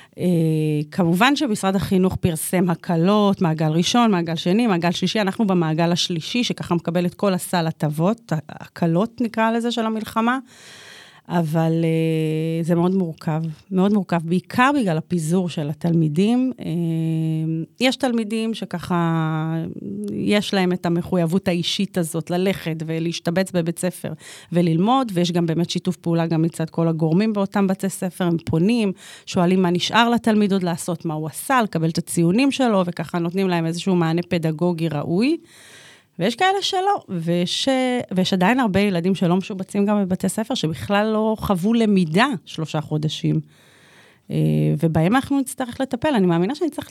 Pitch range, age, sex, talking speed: 165-210 Hz, 30-49, female, 140 wpm